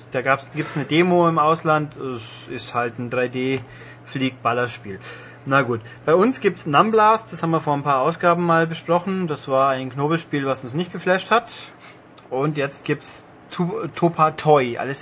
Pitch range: 135-165 Hz